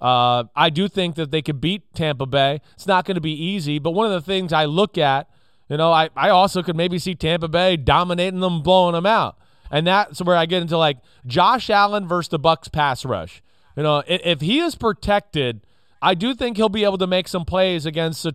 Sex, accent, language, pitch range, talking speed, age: male, American, English, 145-185 Hz, 235 wpm, 30-49